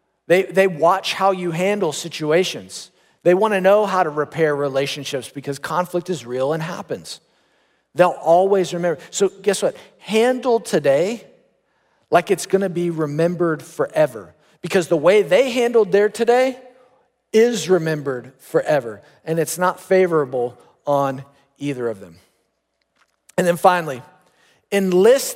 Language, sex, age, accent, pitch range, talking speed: English, male, 40-59, American, 165-205 Hz, 135 wpm